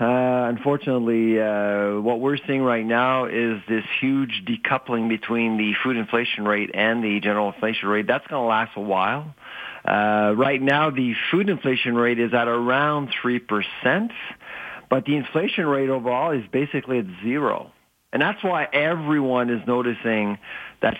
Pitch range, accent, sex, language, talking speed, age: 115-135 Hz, American, male, English, 155 wpm, 40-59